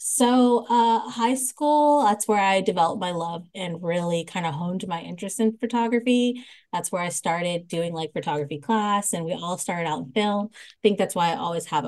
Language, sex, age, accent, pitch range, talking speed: English, female, 20-39, American, 170-215 Hz, 205 wpm